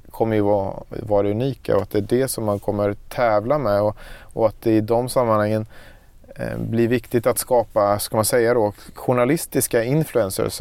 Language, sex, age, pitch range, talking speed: Swedish, male, 30-49, 105-120 Hz, 190 wpm